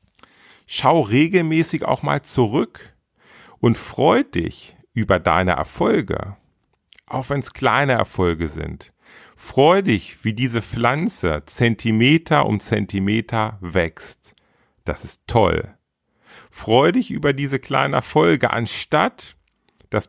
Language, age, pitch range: German, 40-59, 95-130 Hz